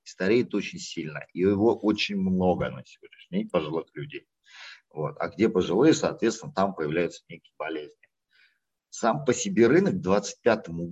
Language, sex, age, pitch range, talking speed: Russian, male, 50-69, 95-155 Hz, 150 wpm